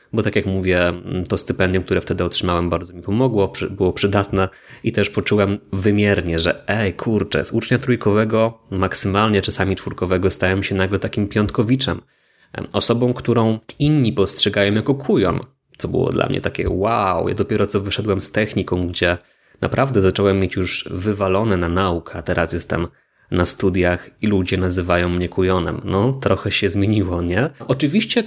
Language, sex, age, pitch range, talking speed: Polish, male, 20-39, 95-110 Hz, 155 wpm